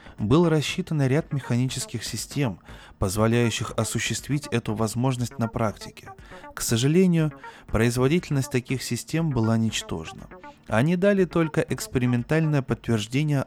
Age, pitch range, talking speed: 20-39, 115-145 Hz, 105 wpm